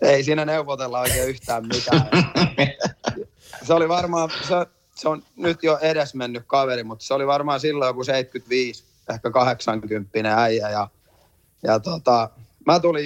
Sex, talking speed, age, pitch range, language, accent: male, 145 wpm, 30-49, 115-150 Hz, Finnish, native